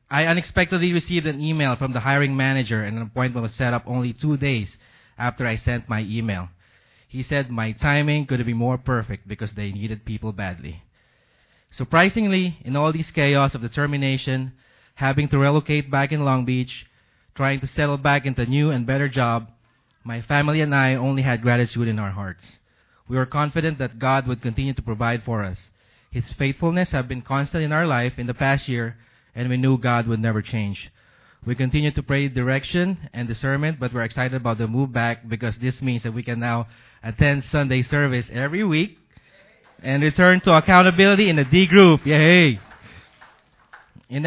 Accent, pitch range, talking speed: Filipino, 120-150 Hz, 185 wpm